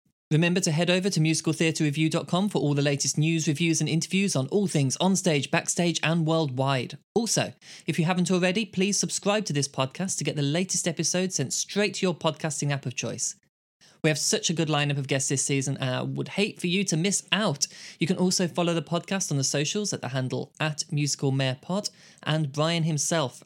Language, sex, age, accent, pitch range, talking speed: English, male, 20-39, British, 140-180 Hz, 205 wpm